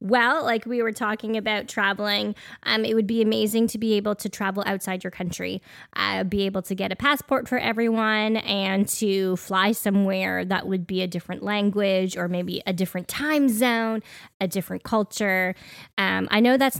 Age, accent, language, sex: 10-29, American, English, female